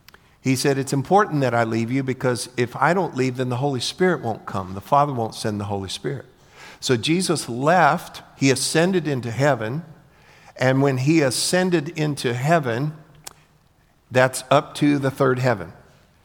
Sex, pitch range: male, 125-160 Hz